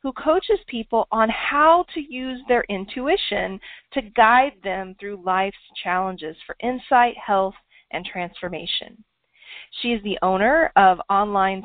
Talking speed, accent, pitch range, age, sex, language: 135 wpm, American, 190-250 Hz, 40-59, female, English